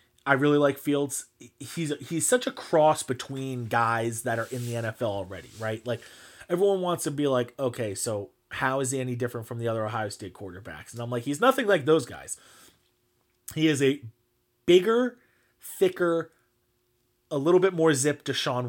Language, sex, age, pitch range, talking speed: English, male, 30-49, 120-145 Hz, 180 wpm